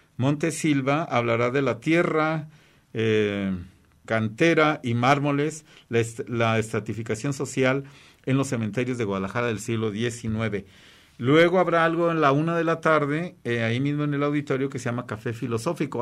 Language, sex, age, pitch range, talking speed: Spanish, male, 50-69, 115-150 Hz, 160 wpm